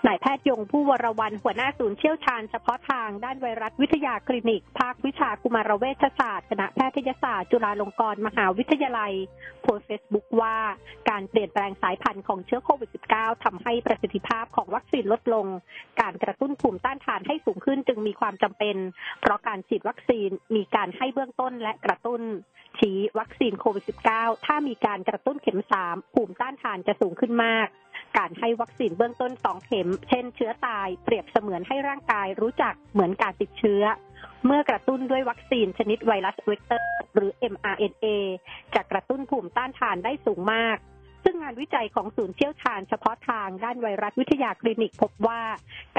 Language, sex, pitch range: Thai, female, 205-255 Hz